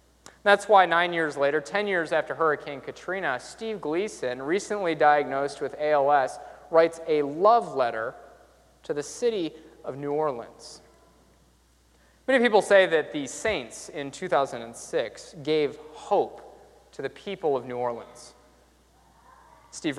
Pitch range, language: 135-210 Hz, English